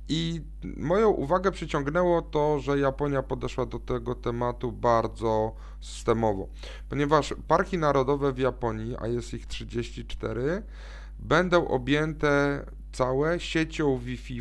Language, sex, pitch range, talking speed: Polish, male, 115-145 Hz, 110 wpm